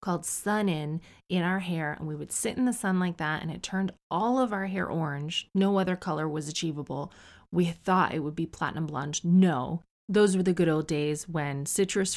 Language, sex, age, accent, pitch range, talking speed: English, female, 30-49, American, 160-205 Hz, 215 wpm